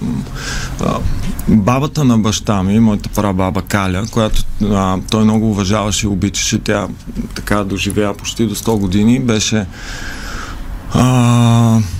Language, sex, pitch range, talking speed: Bulgarian, male, 105-120 Hz, 110 wpm